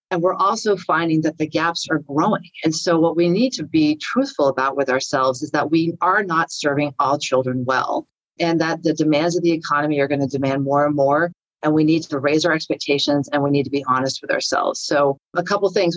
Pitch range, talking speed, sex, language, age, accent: 145-170 Hz, 235 wpm, female, English, 40-59, American